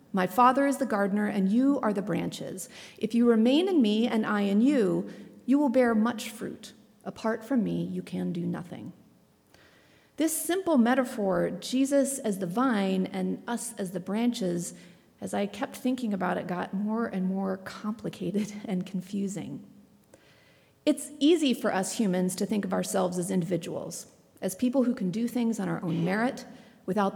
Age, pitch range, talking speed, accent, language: 40-59, 190-250 Hz, 170 wpm, American, English